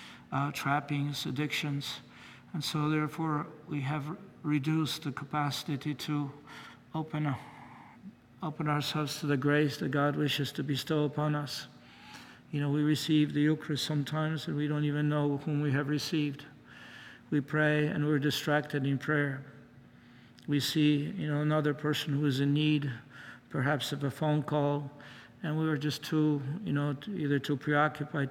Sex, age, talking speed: male, 60-79, 155 wpm